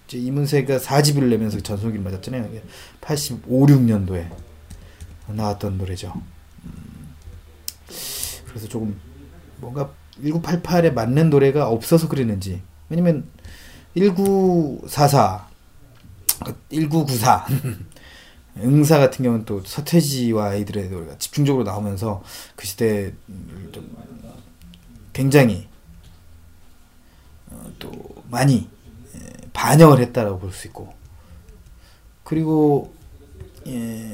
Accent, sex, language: native, male, Korean